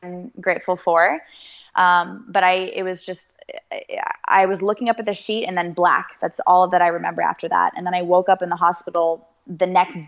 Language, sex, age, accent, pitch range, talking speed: English, female, 20-39, American, 170-185 Hz, 210 wpm